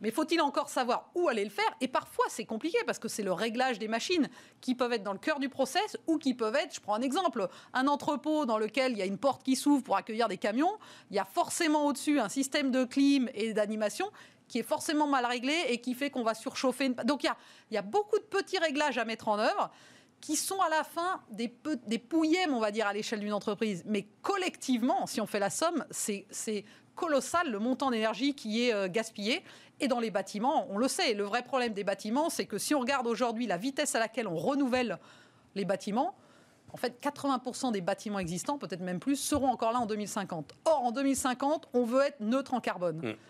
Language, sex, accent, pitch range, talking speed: French, female, French, 225-300 Hz, 235 wpm